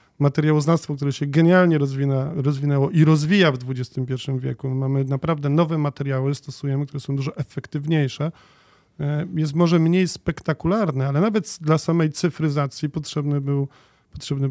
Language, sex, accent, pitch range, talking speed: Polish, male, native, 140-165 Hz, 125 wpm